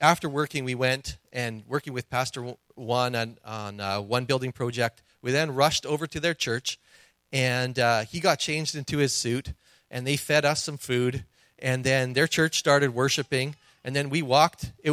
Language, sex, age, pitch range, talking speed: English, male, 40-59, 115-140 Hz, 190 wpm